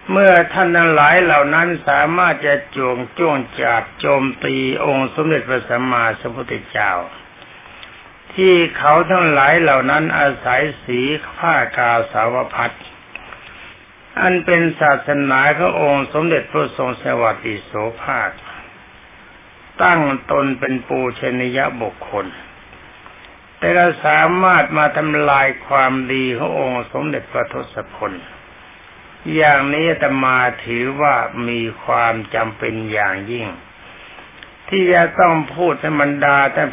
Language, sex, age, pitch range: Thai, male, 60-79, 120-155 Hz